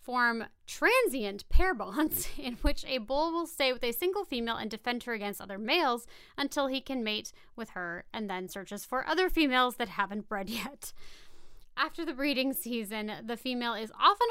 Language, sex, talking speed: English, female, 185 wpm